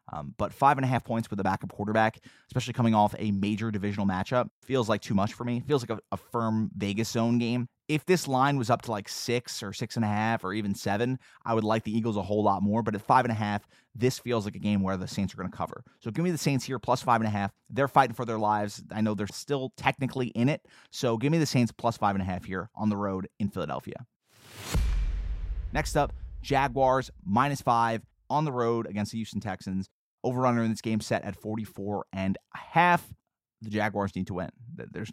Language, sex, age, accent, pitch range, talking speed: English, male, 30-49, American, 105-130 Hz, 240 wpm